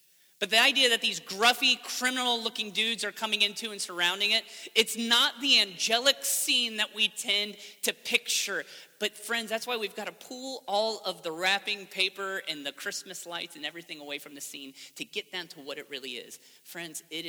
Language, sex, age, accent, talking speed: English, male, 30-49, American, 200 wpm